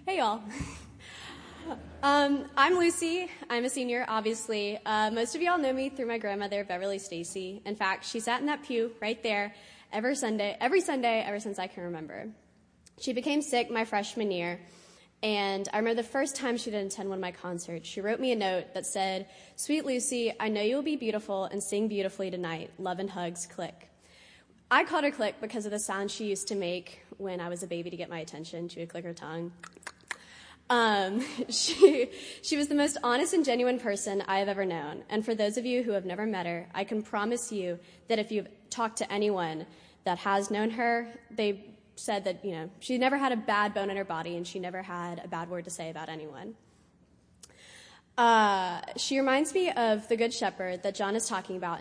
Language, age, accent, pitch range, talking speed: English, 20-39, American, 185-240 Hz, 210 wpm